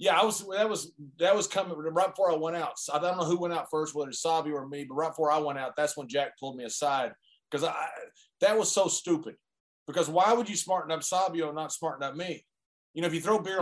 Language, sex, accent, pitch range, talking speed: English, male, American, 145-190 Hz, 270 wpm